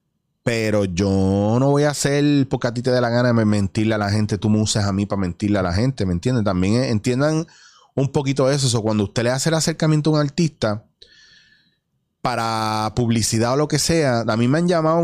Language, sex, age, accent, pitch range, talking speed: Spanish, male, 30-49, Venezuelan, 105-130 Hz, 220 wpm